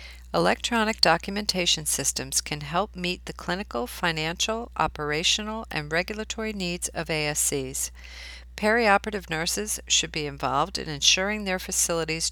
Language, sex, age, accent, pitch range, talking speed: English, female, 40-59, American, 145-185 Hz, 115 wpm